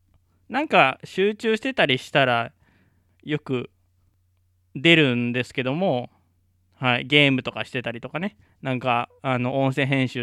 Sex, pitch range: male, 90-145 Hz